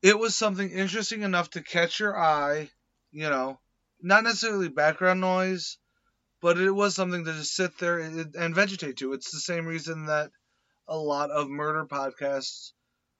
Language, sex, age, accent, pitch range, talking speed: English, male, 30-49, American, 145-175 Hz, 165 wpm